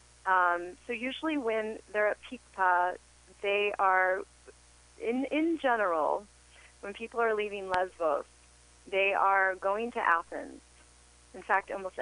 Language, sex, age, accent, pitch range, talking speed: English, female, 30-49, American, 160-200 Hz, 125 wpm